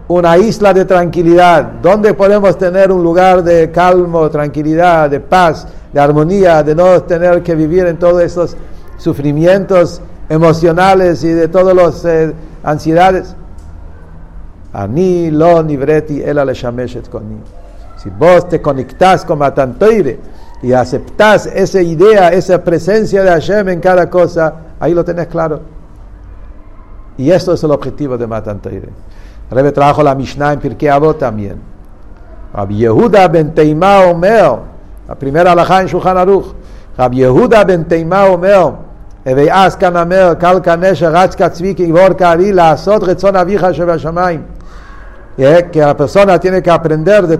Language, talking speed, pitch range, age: English, 135 wpm, 140-180 Hz, 60-79